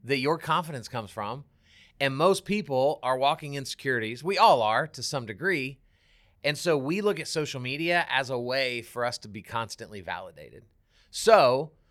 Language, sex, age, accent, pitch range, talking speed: English, male, 30-49, American, 115-170 Hz, 175 wpm